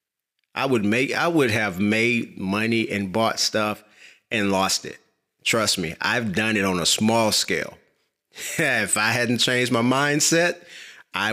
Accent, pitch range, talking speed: American, 110-135 Hz, 160 wpm